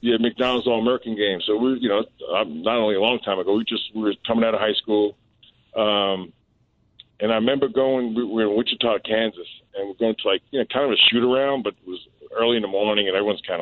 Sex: male